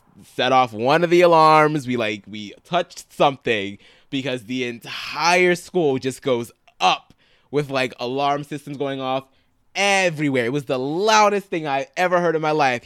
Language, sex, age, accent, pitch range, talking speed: English, male, 20-39, American, 135-185 Hz, 170 wpm